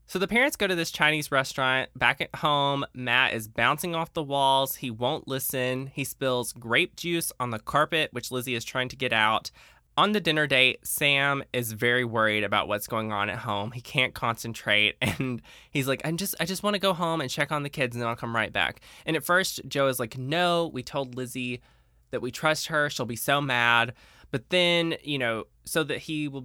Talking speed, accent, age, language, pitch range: 225 wpm, American, 20-39, English, 115-150 Hz